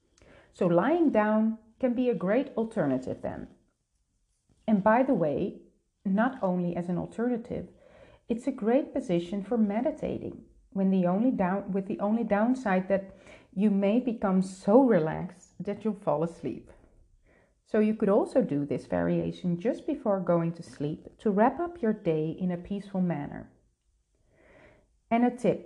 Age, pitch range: 40-59, 185-235 Hz